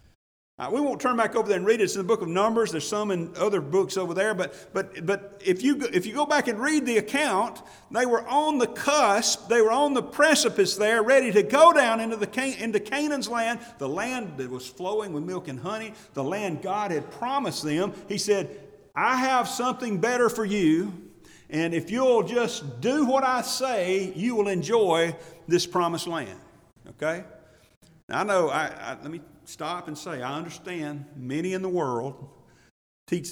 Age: 40-59